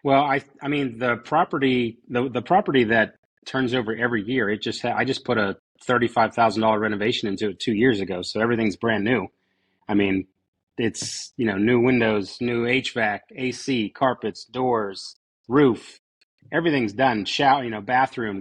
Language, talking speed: English, 165 wpm